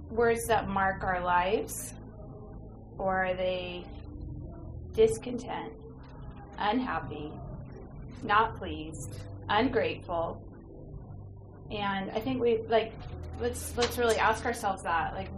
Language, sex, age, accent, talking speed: English, female, 30-49, American, 100 wpm